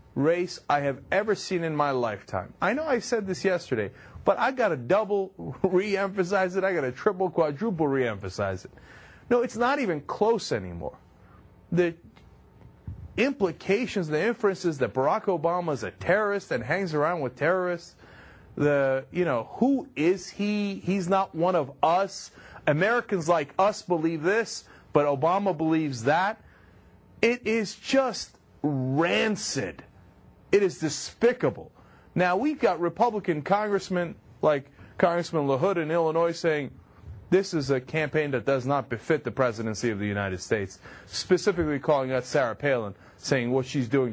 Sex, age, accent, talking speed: male, 30-49, American, 145 wpm